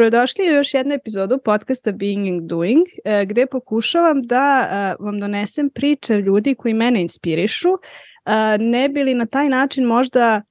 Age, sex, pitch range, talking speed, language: 20-39, female, 215-265 Hz, 145 wpm, English